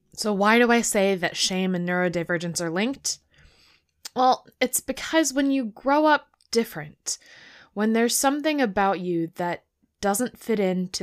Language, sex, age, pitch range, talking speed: English, female, 10-29, 165-215 Hz, 150 wpm